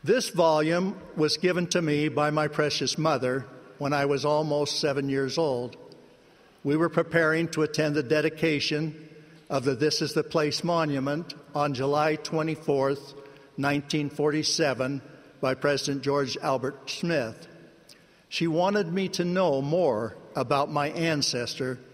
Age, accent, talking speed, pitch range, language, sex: 60-79, American, 135 wpm, 140-165 Hz, English, male